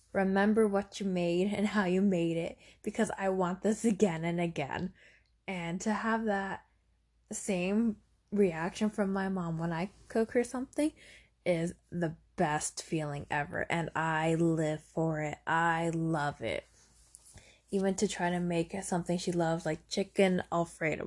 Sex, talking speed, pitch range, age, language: female, 155 wpm, 165-200 Hz, 20-39, English